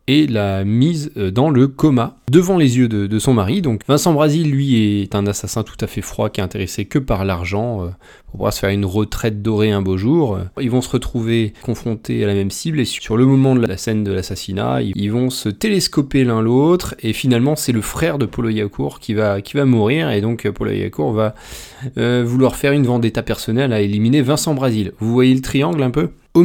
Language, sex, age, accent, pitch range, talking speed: French, male, 20-39, French, 100-125 Hz, 225 wpm